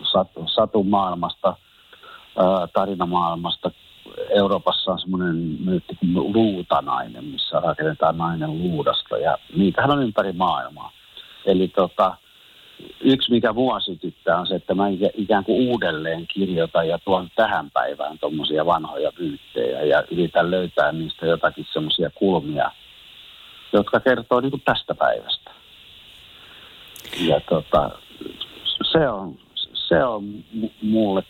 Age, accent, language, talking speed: 60-79, native, Finnish, 110 wpm